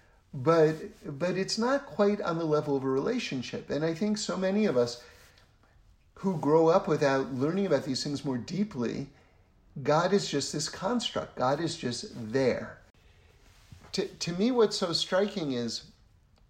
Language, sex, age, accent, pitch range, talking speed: English, male, 50-69, American, 130-175 Hz, 160 wpm